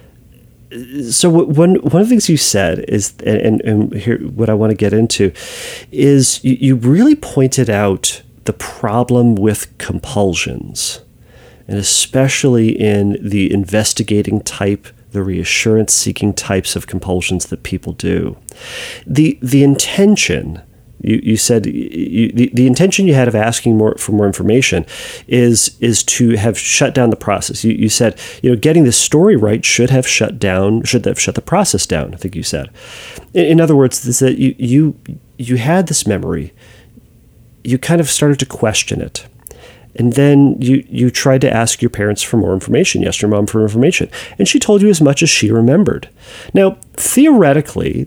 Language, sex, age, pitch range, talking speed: English, male, 30-49, 105-135 Hz, 170 wpm